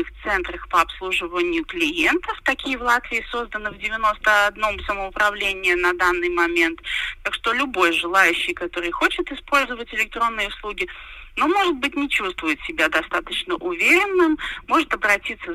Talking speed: 130 wpm